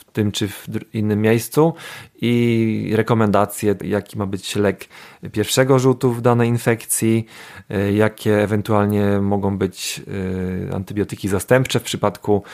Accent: native